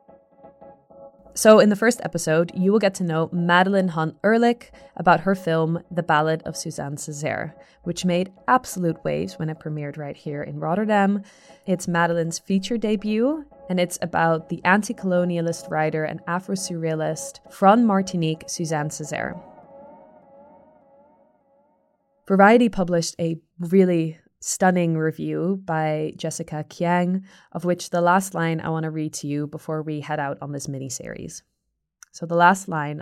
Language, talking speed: English, 145 wpm